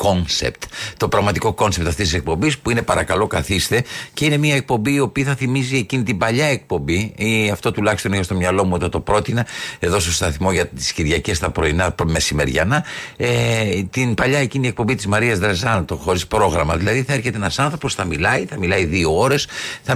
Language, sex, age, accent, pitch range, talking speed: Greek, male, 50-69, Spanish, 85-125 Hz, 200 wpm